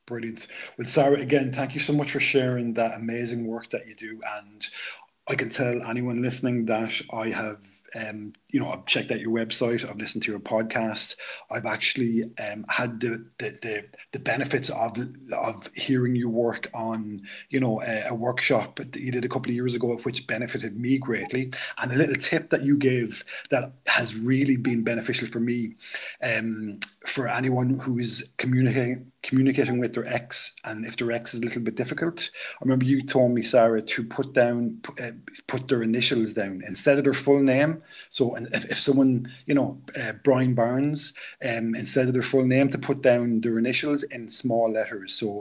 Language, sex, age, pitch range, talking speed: English, male, 20-39, 115-135 Hz, 195 wpm